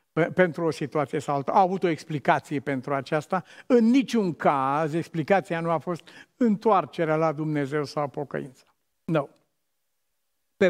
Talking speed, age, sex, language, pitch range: 140 wpm, 50-69, male, Romanian, 155-215 Hz